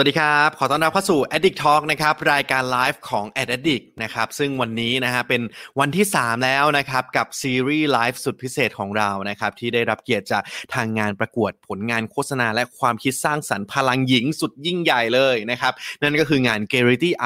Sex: male